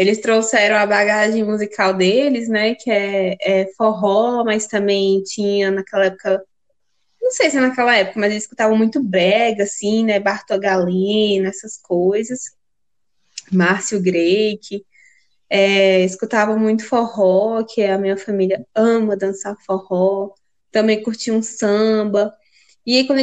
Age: 20-39